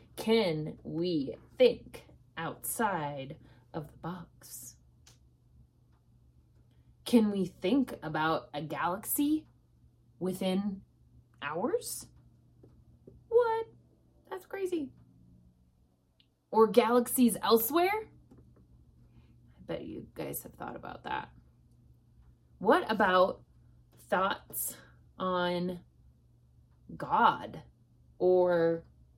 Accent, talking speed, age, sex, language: American, 70 wpm, 20-39, female, English